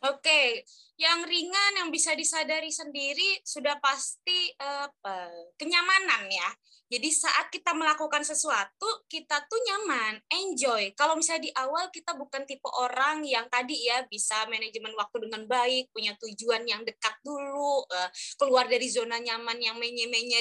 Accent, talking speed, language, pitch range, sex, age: native, 140 wpm, Indonesian, 255-370 Hz, female, 20-39